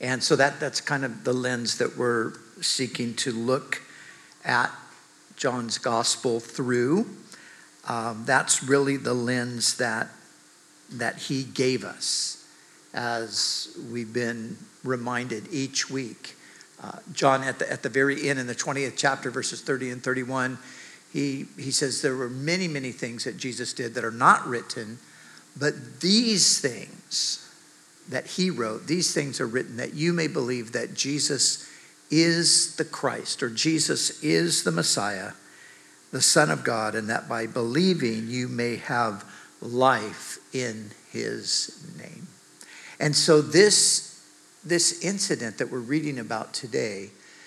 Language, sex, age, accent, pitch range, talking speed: English, male, 50-69, American, 120-155 Hz, 145 wpm